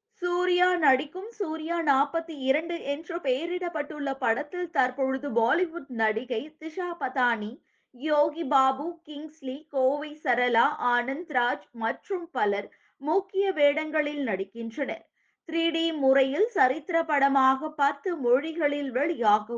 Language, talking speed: Tamil, 95 wpm